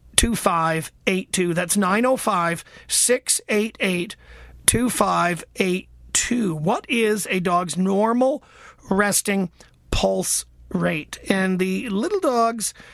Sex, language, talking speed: male, English, 70 wpm